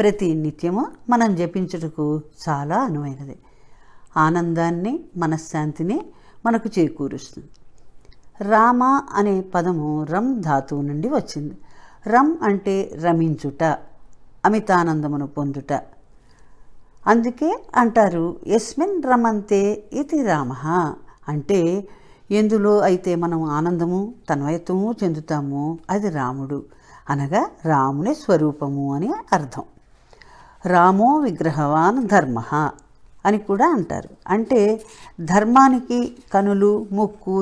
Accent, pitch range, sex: native, 155-210 Hz, female